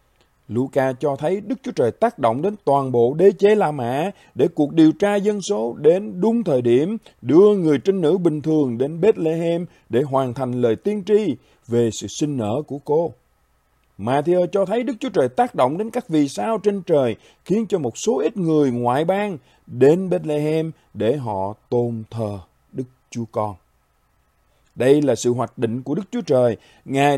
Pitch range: 120-175 Hz